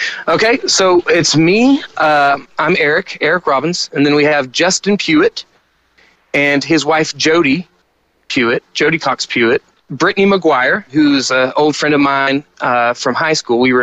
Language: English